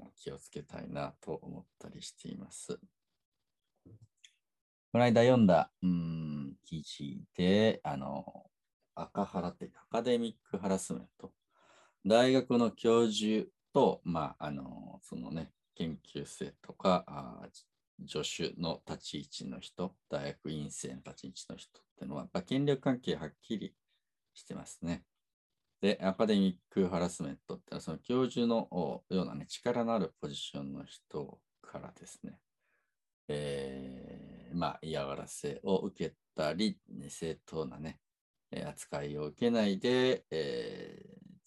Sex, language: male, Japanese